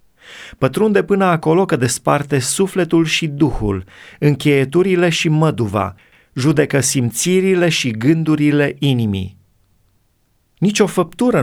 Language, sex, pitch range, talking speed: Romanian, male, 120-165 Hz, 100 wpm